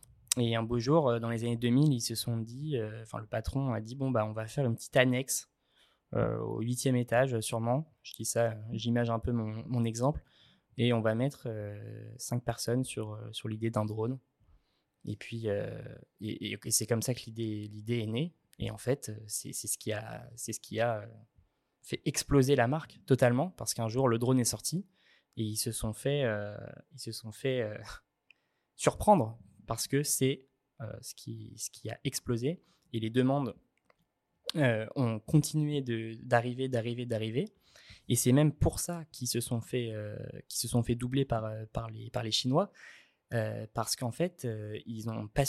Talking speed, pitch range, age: 200 wpm, 110-135 Hz, 20-39